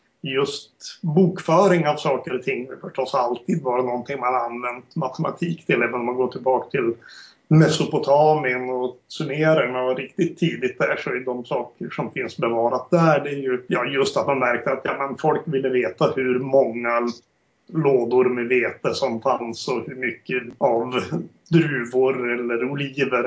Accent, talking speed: native, 160 wpm